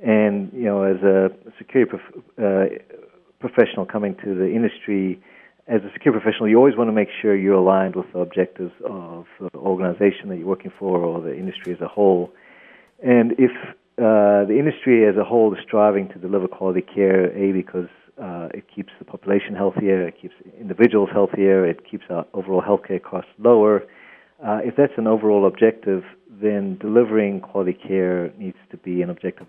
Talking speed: 180 wpm